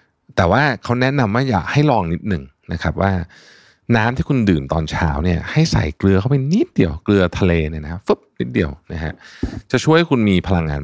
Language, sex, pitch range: Thai, male, 85-120 Hz